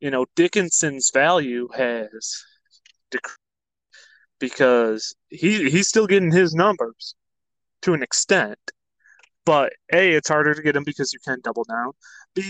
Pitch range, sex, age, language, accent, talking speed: 130-170 Hz, male, 20-39, English, American, 135 wpm